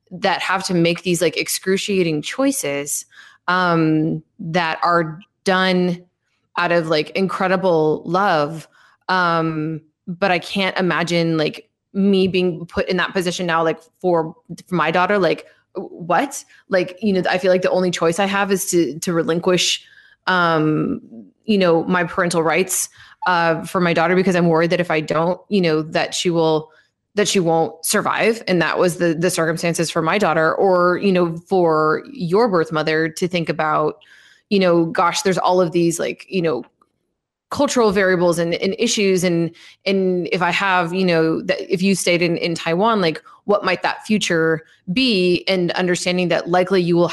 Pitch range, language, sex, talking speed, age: 165-190 Hz, English, female, 175 wpm, 20-39